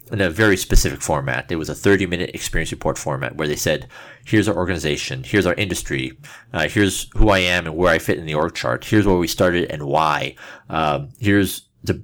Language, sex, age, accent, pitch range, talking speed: English, male, 30-49, American, 90-120 Hz, 215 wpm